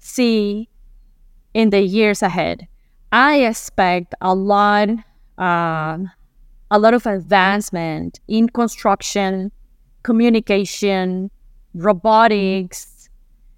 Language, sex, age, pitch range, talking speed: English, female, 20-39, 180-235 Hz, 80 wpm